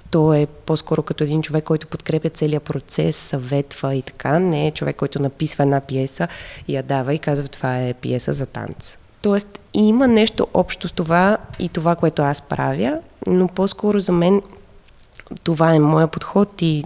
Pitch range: 145-180 Hz